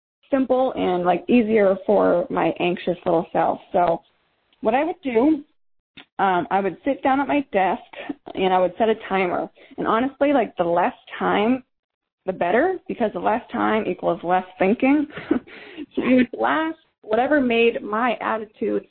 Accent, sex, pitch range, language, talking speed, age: American, female, 200-275 Hz, English, 160 wpm, 20-39